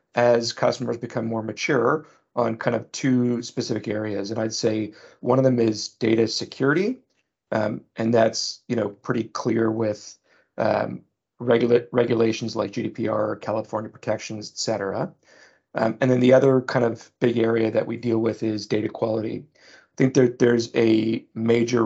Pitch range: 110-120 Hz